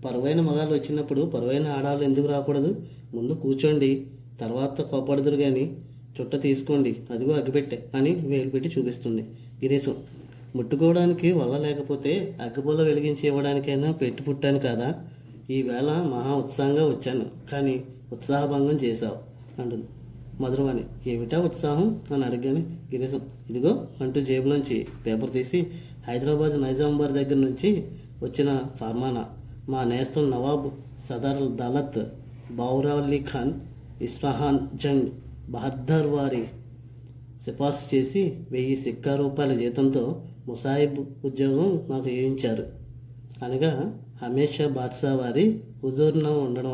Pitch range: 125-145 Hz